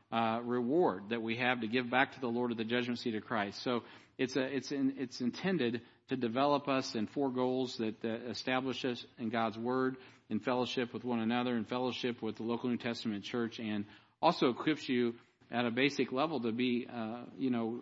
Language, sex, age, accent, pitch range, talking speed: English, male, 50-69, American, 115-130 Hz, 210 wpm